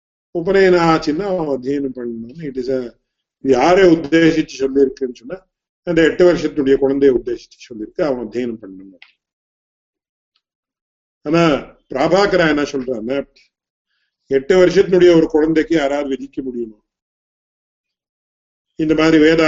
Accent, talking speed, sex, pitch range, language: Indian, 35 wpm, male, 135-170 Hz, English